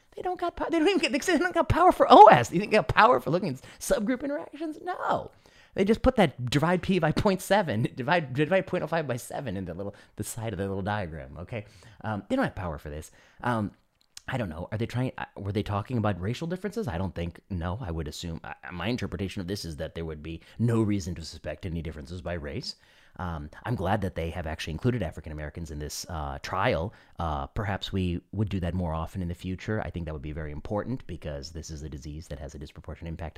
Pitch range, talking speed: 85-125 Hz, 240 wpm